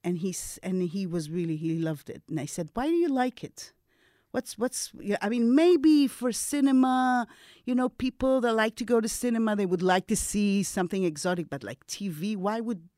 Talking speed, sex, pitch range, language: 210 wpm, female, 170-225 Hz, English